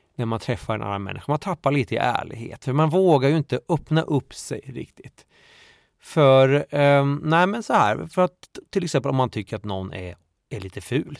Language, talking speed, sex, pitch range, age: Swedish, 210 wpm, male, 110-155 Hz, 30-49